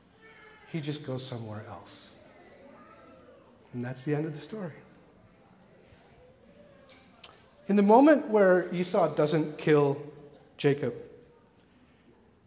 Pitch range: 145-195 Hz